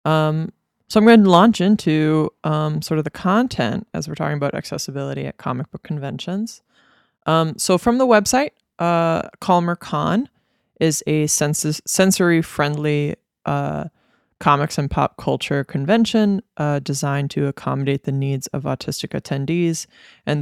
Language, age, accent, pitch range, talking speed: English, 20-39, American, 145-185 Hz, 140 wpm